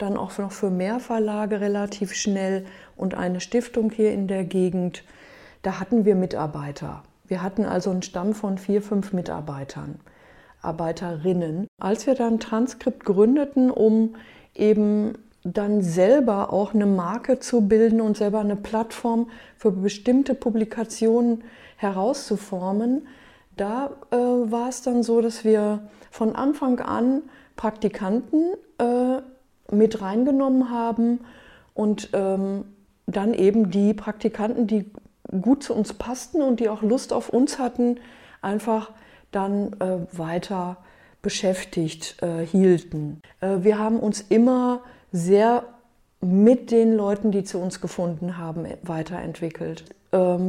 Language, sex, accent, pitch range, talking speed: German, female, German, 195-235 Hz, 125 wpm